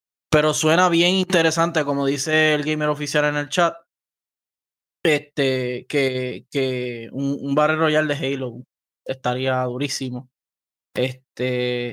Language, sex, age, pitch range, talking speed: Spanish, male, 20-39, 135-165 Hz, 120 wpm